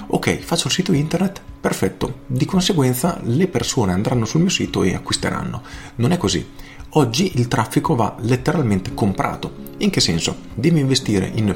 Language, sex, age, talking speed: Italian, male, 40-59, 160 wpm